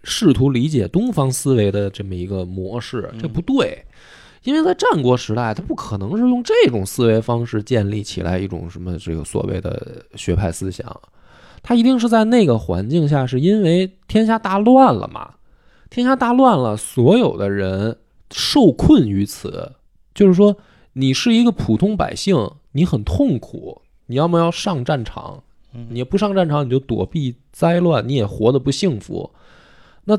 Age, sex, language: 20-39, male, Chinese